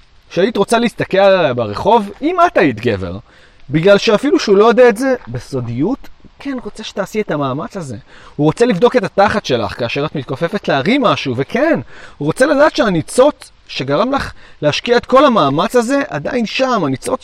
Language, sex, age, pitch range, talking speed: Arabic, male, 30-49, 135-215 Hz, 165 wpm